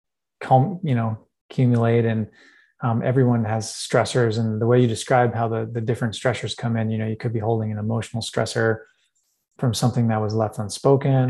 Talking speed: 185 wpm